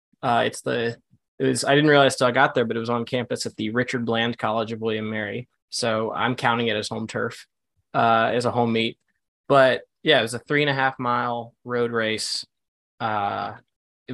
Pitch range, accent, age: 115-130 Hz, American, 20-39